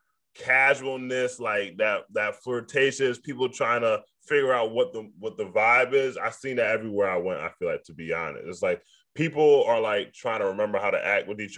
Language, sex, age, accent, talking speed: English, male, 10-29, American, 210 wpm